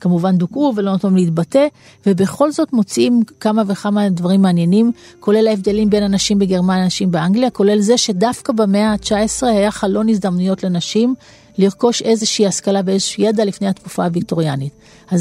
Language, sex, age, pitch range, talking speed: Hebrew, female, 40-59, 190-235 Hz, 145 wpm